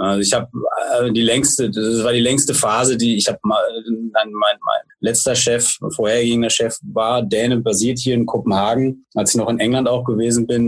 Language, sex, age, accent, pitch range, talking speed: Danish, male, 30-49, German, 115-170 Hz, 195 wpm